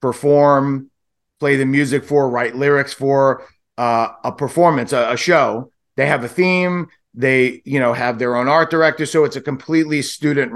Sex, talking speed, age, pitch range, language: male, 175 wpm, 30-49, 120-145 Hz, English